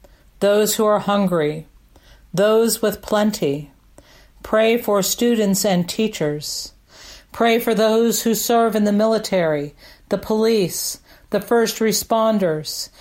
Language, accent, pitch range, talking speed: English, American, 170-220 Hz, 115 wpm